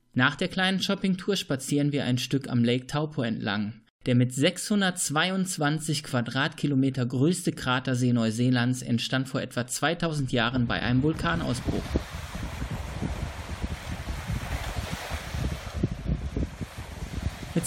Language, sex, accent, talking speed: German, male, German, 95 wpm